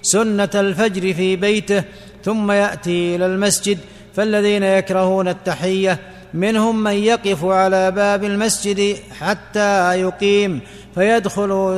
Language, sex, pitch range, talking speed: Arabic, male, 185-205 Hz, 100 wpm